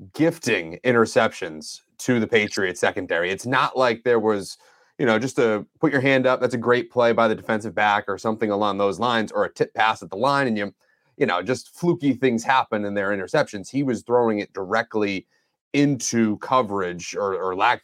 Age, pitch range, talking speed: 30-49, 110-155 Hz, 200 wpm